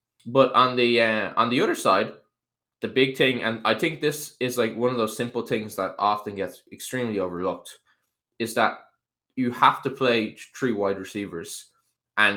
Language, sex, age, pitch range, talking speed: English, male, 10-29, 110-130 Hz, 180 wpm